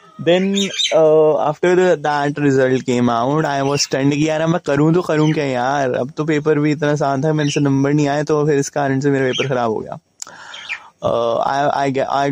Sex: male